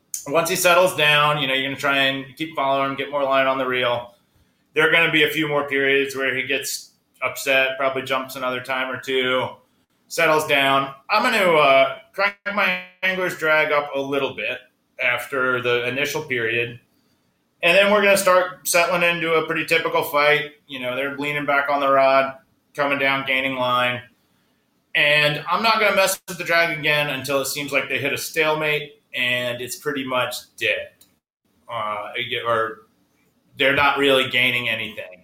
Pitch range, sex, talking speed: 120-150 Hz, male, 185 wpm